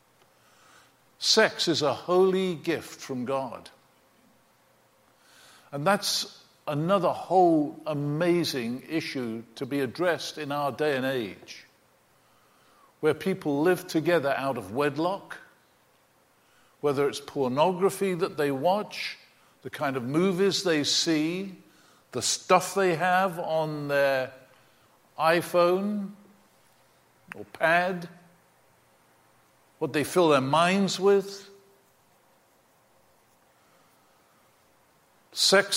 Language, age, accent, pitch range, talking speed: English, 50-69, British, 140-180 Hz, 95 wpm